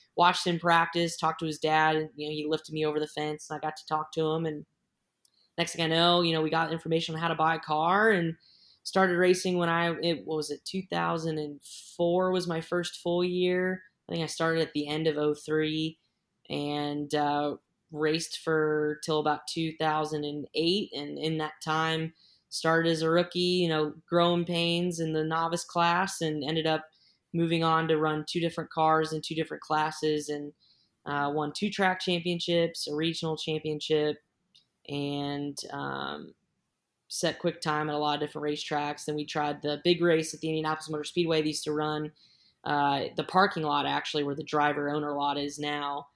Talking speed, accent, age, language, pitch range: 190 wpm, American, 10-29, English, 150-170 Hz